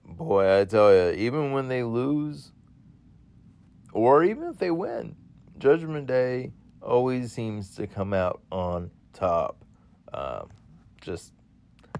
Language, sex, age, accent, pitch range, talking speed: English, male, 40-59, American, 95-125 Hz, 120 wpm